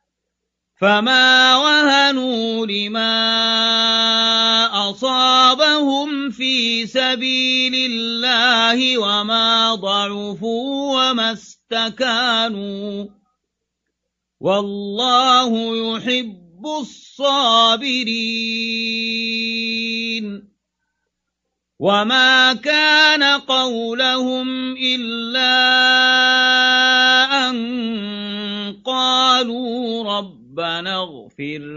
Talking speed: 40 wpm